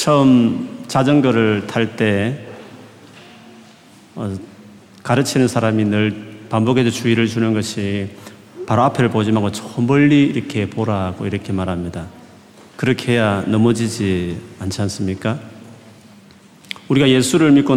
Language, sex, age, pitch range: Korean, male, 40-59, 105-140 Hz